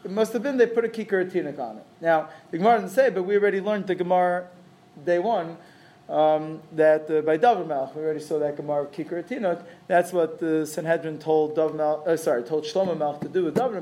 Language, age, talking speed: English, 20-39, 230 wpm